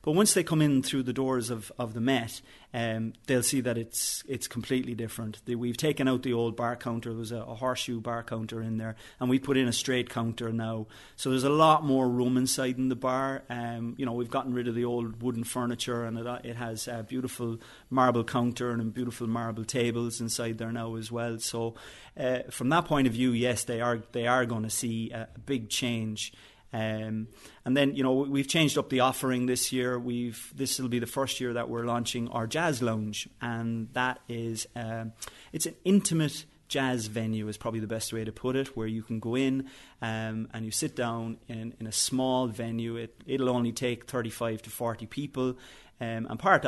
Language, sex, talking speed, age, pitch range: English, male, 215 wpm, 30-49, 115-130 Hz